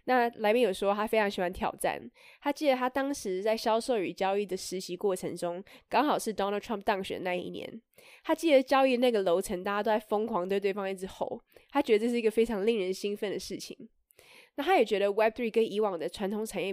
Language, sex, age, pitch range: Chinese, female, 20-39, 195-255 Hz